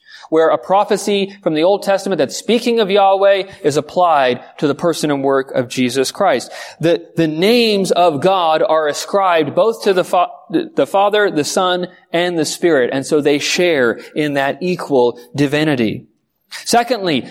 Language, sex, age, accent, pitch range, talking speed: English, male, 30-49, American, 160-225 Hz, 165 wpm